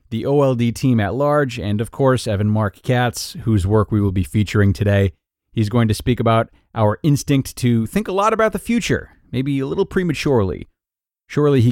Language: English